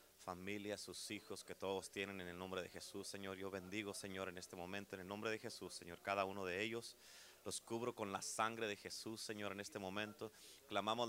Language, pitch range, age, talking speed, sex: Spanish, 95-110 Hz, 30-49, 215 wpm, male